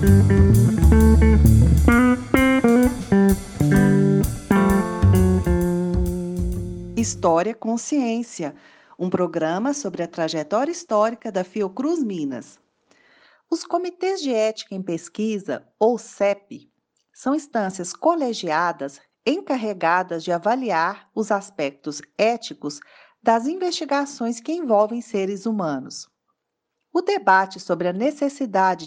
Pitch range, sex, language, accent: 170-270 Hz, female, Portuguese, Brazilian